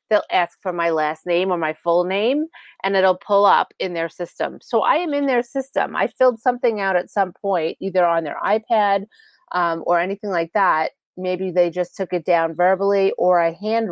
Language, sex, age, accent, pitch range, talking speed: English, female, 30-49, American, 175-225 Hz, 210 wpm